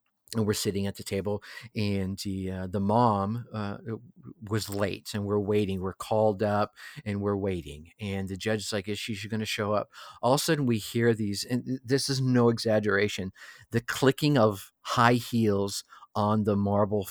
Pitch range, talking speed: 105-125 Hz, 185 wpm